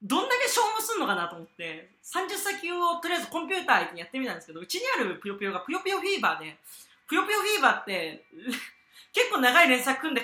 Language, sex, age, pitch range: Japanese, female, 40-59, 200-330 Hz